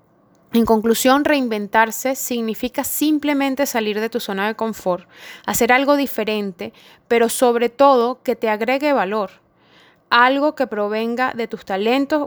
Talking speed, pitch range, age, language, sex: 130 wpm, 200-250 Hz, 20-39, Spanish, female